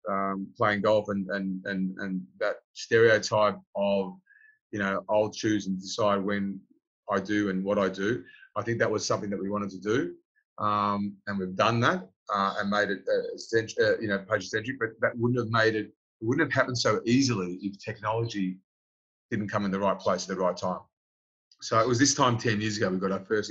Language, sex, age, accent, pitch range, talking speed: English, male, 30-49, Australian, 95-115 Hz, 215 wpm